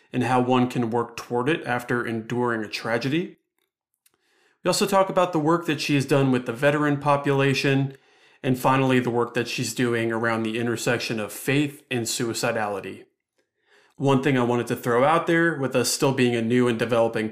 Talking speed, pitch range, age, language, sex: 190 wpm, 115-140 Hz, 30-49, English, male